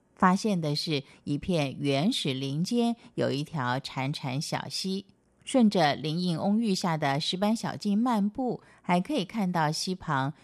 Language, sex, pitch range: Chinese, female, 145-200 Hz